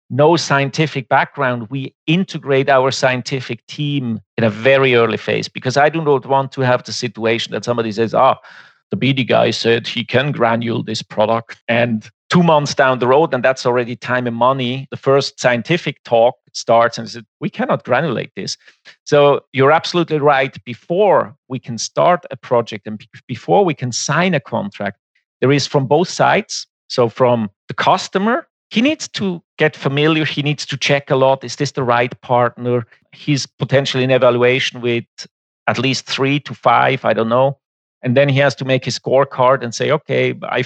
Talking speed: 185 wpm